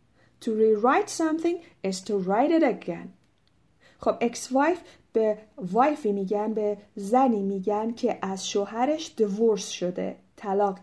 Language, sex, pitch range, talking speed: Persian, female, 195-235 Hz, 120 wpm